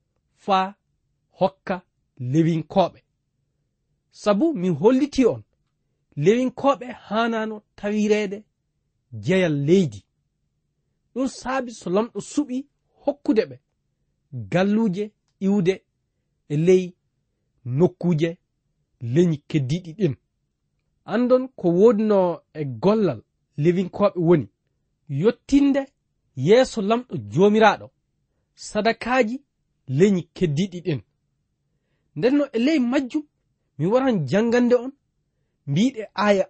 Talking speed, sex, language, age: 80 wpm, male, English, 40-59